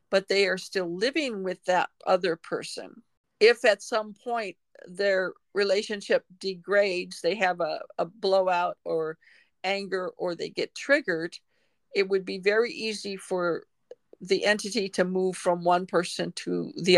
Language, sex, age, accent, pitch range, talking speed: English, female, 50-69, American, 180-210 Hz, 150 wpm